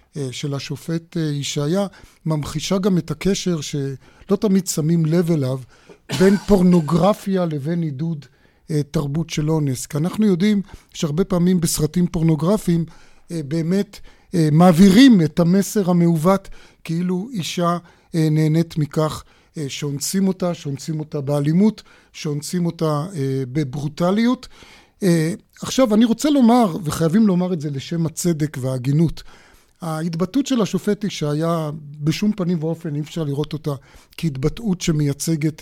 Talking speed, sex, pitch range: 115 wpm, male, 150-180 Hz